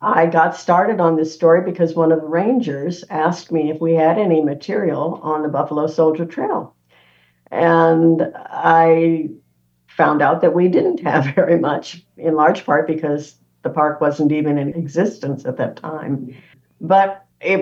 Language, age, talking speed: English, 60-79, 165 wpm